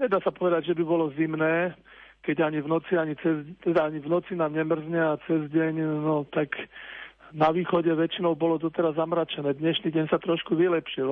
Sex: male